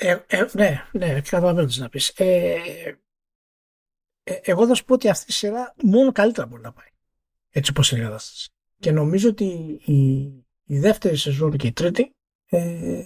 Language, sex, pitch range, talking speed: Greek, male, 135-190 Hz, 180 wpm